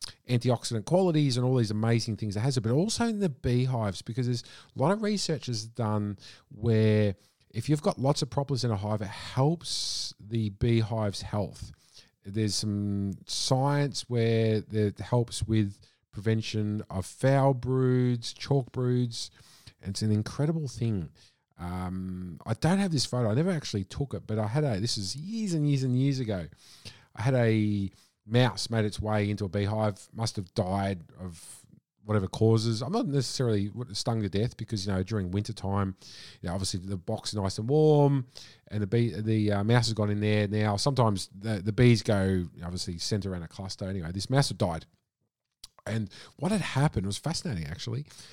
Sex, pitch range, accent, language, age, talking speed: male, 105-130 Hz, Australian, English, 40-59, 190 wpm